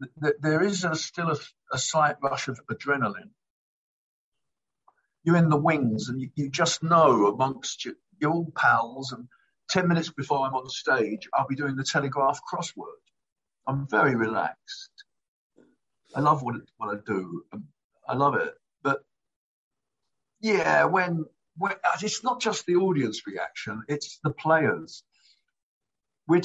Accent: British